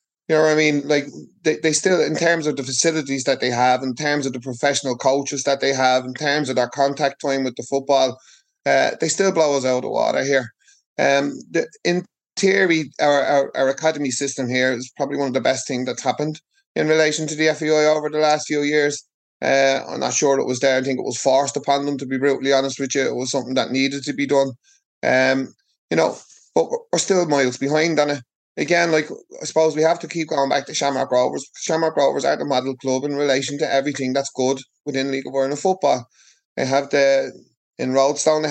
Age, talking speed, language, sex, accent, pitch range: 30-49, 230 wpm, English, male, Irish, 135-155 Hz